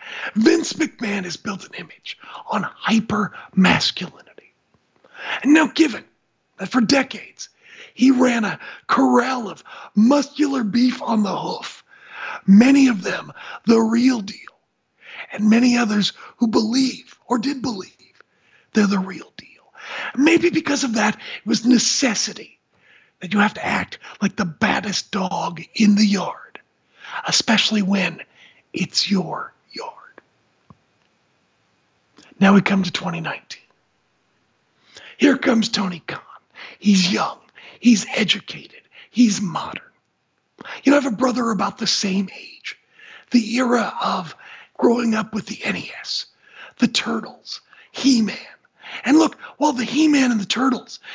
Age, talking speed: 40-59, 130 wpm